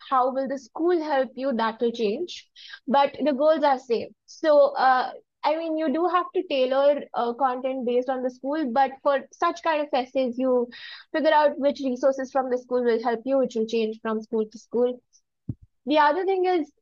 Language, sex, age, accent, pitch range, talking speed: English, female, 20-39, Indian, 230-275 Hz, 205 wpm